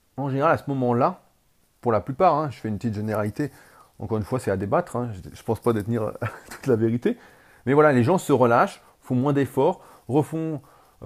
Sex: male